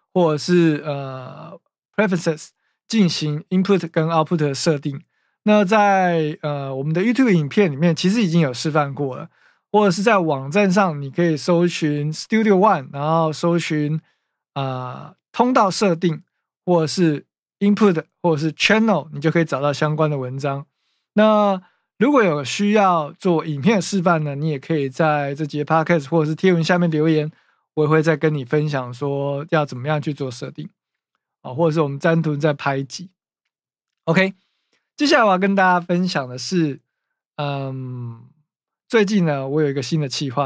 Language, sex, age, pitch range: Chinese, male, 20-39, 140-180 Hz